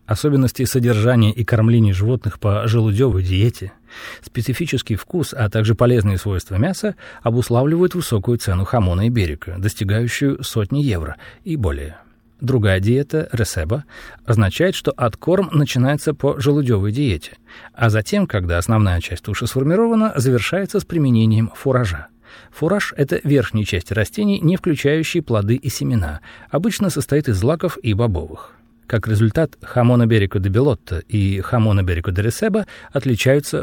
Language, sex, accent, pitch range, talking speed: Russian, male, native, 105-145 Hz, 135 wpm